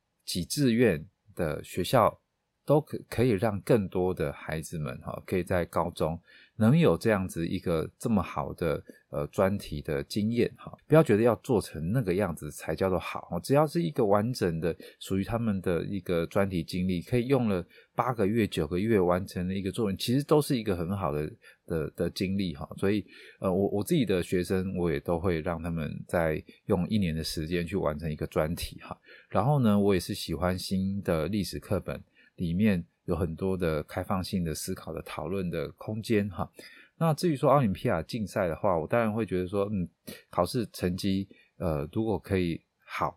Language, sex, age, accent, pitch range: Chinese, male, 20-39, native, 85-110 Hz